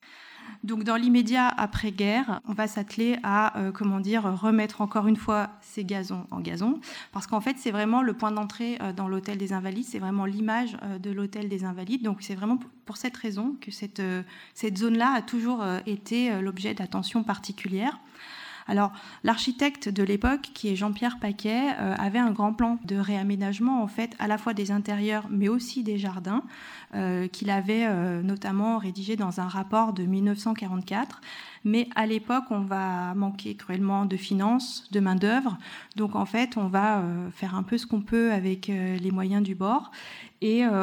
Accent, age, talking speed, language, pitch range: French, 20-39, 175 wpm, French, 195-235 Hz